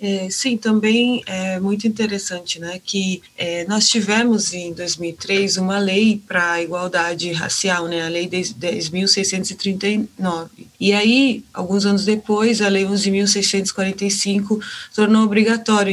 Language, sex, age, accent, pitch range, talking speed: Portuguese, female, 20-39, Brazilian, 180-215 Hz, 125 wpm